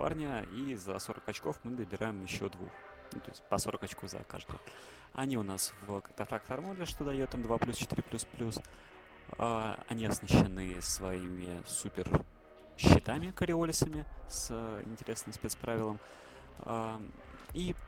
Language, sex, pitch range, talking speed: Russian, male, 90-115 Hz, 140 wpm